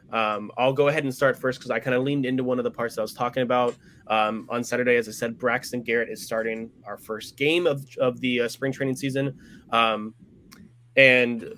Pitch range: 120-140 Hz